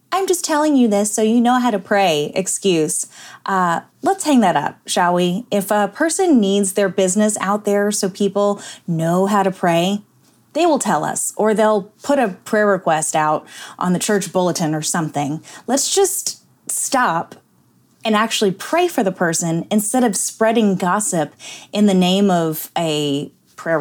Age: 20-39